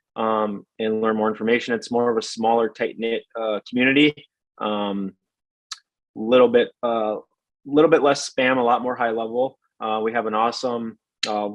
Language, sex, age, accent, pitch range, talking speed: English, male, 20-39, American, 105-125 Hz, 165 wpm